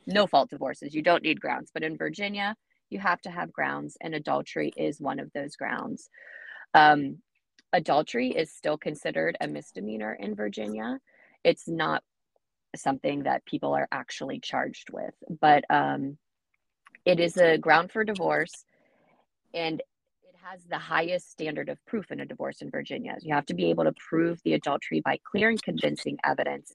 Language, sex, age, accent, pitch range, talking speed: English, female, 20-39, American, 150-185 Hz, 170 wpm